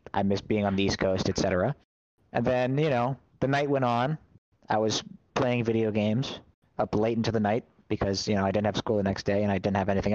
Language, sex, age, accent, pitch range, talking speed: English, male, 40-59, American, 105-125 Hz, 250 wpm